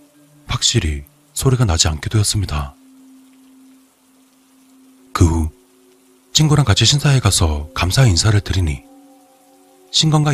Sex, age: male, 40-59